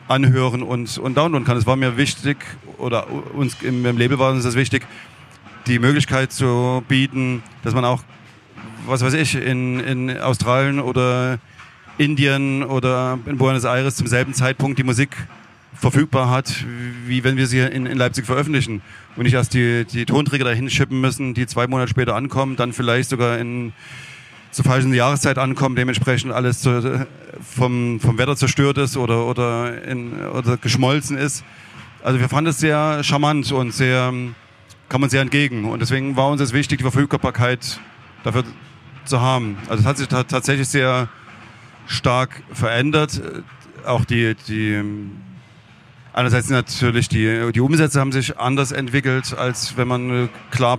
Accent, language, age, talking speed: German, German, 30-49, 165 wpm